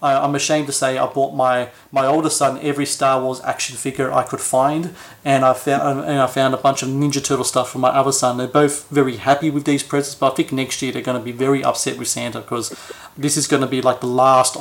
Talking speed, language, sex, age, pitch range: 260 wpm, English, male, 30-49, 130-150 Hz